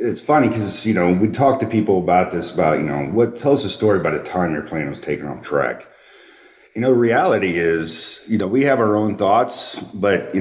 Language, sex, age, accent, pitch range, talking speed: English, male, 40-59, American, 85-110 Hz, 230 wpm